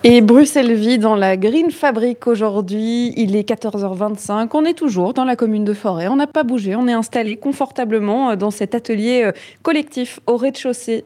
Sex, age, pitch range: female, 20-39, 200-250 Hz